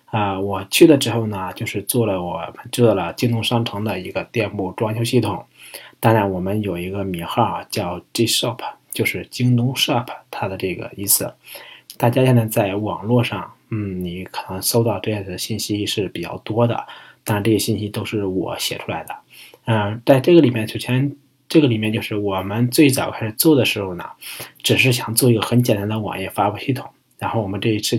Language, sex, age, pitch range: Chinese, male, 20-39, 100-120 Hz